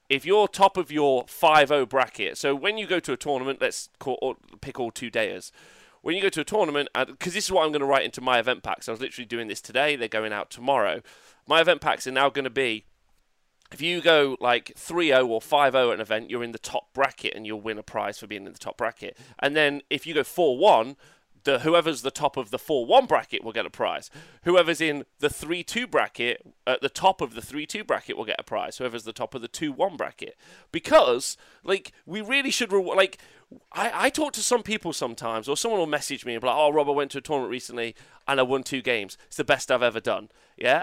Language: English